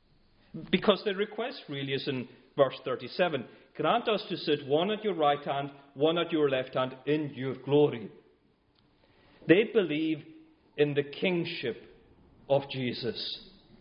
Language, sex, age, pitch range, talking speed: English, male, 40-59, 135-170 Hz, 140 wpm